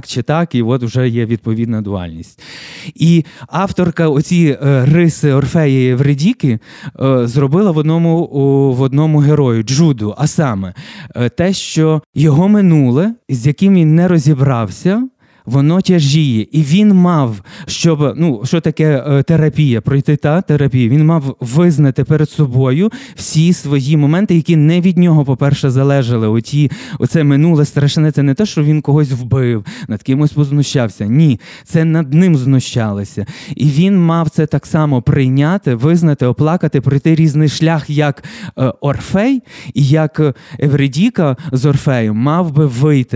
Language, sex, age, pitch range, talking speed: Ukrainian, male, 20-39, 130-160 Hz, 145 wpm